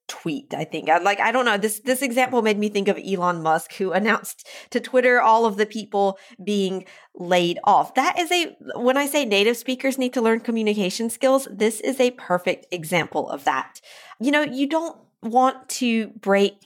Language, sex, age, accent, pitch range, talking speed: English, female, 40-59, American, 180-235 Hz, 195 wpm